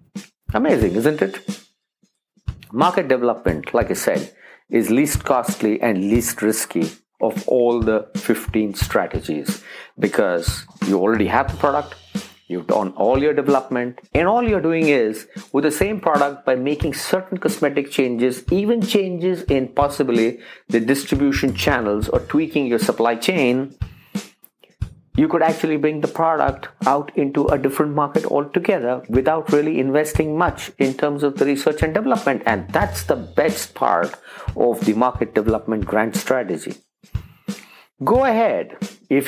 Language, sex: English, male